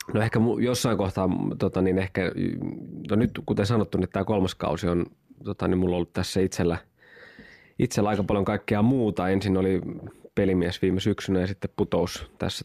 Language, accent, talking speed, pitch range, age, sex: Finnish, native, 175 wpm, 90-100 Hz, 20-39, male